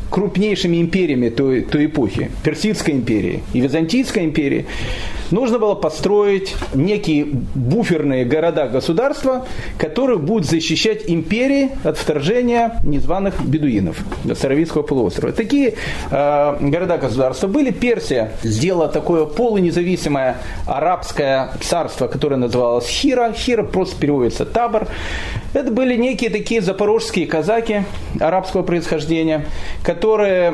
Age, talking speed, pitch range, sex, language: 40-59, 100 wpm, 145-215 Hz, male, Russian